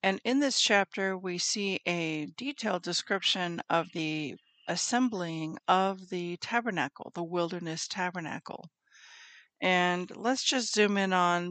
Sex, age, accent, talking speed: female, 60-79, American, 125 wpm